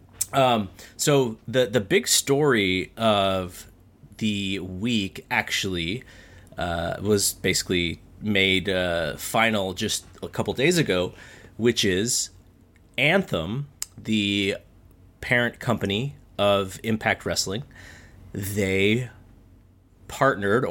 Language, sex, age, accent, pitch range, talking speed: English, male, 30-49, American, 95-115 Hz, 95 wpm